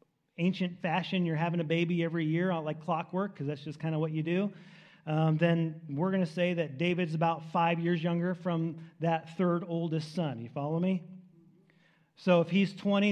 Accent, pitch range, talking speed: American, 155-185 Hz, 190 wpm